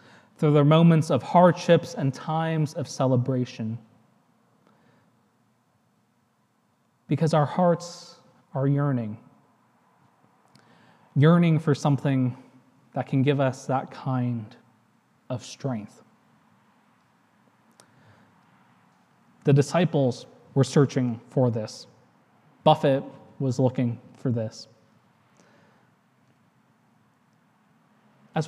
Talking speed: 80 wpm